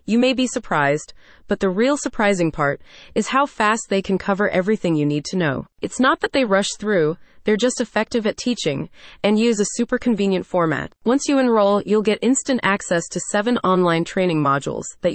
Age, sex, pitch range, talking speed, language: 30-49, female, 175-235 Hz, 200 wpm, English